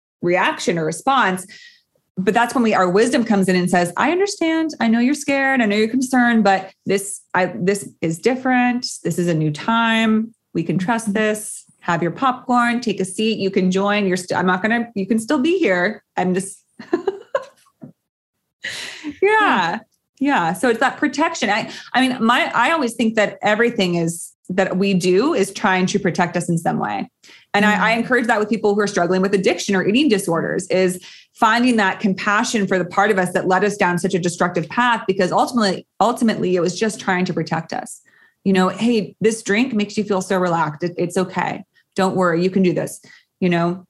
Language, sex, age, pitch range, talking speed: English, female, 30-49, 180-235 Hz, 205 wpm